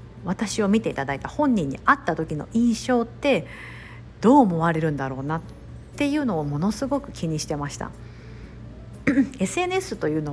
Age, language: 50-69, Japanese